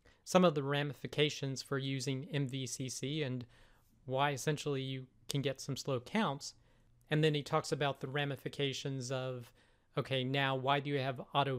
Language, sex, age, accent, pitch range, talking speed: English, male, 40-59, American, 130-150 Hz, 160 wpm